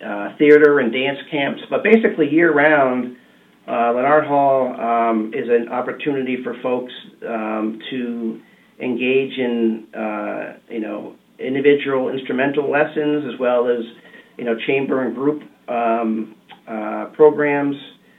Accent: American